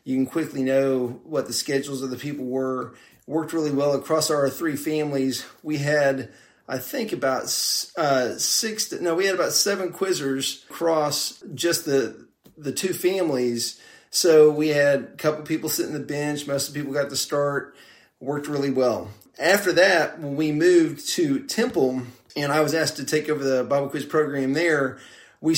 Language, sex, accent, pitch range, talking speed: English, male, American, 135-155 Hz, 185 wpm